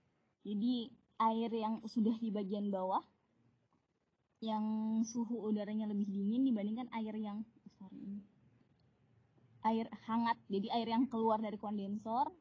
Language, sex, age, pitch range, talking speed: Indonesian, female, 20-39, 200-245 Hz, 115 wpm